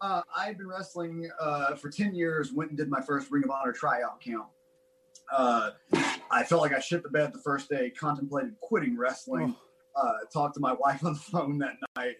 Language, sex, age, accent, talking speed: English, male, 30-49, American, 205 wpm